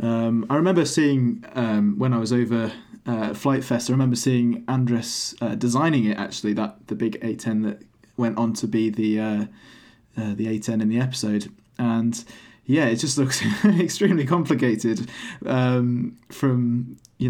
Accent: British